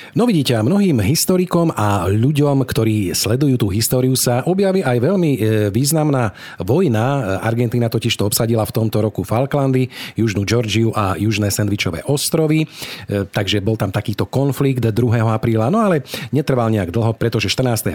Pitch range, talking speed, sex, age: 105-140 Hz, 145 wpm, male, 40-59